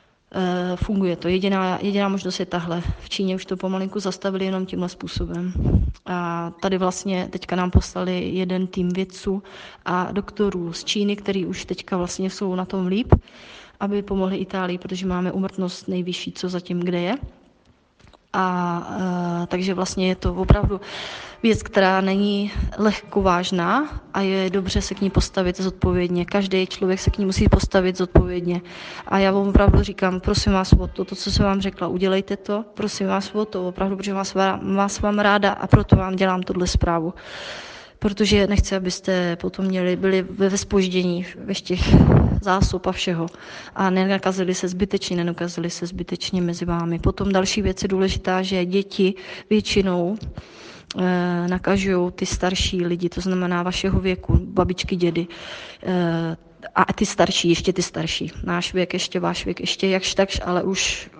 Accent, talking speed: native, 165 wpm